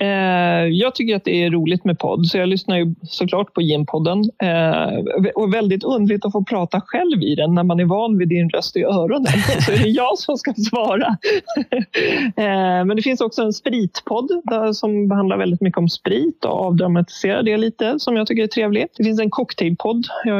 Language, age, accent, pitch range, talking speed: Swedish, 30-49, native, 175-220 Hz, 195 wpm